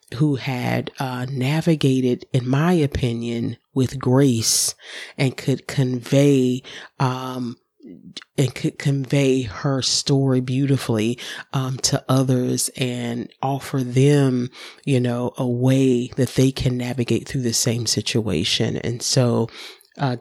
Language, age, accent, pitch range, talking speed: English, 30-49, American, 125-140 Hz, 120 wpm